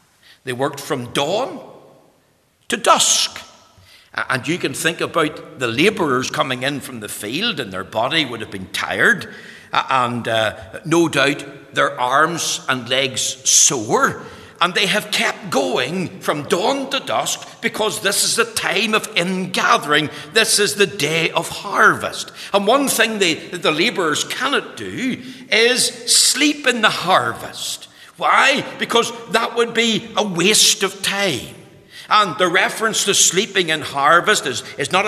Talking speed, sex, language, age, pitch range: 150 wpm, male, English, 60-79, 140-215 Hz